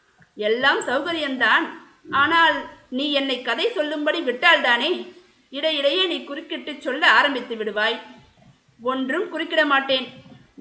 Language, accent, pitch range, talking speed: Tamil, native, 235-305 Hz, 100 wpm